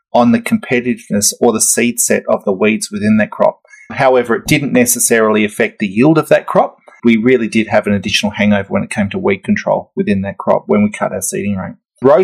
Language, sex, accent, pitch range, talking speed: English, male, Australian, 115-165 Hz, 225 wpm